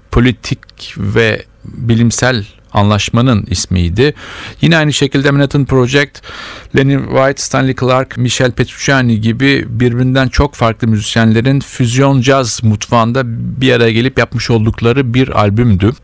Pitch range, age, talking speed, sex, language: 105-130 Hz, 50-69, 110 wpm, male, Turkish